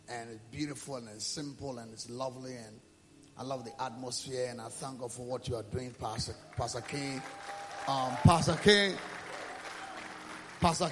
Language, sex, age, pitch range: English, male, 30-49, 135-180 Hz